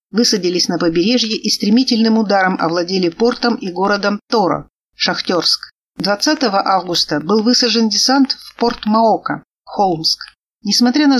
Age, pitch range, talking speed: 50-69, 185-235 Hz, 125 wpm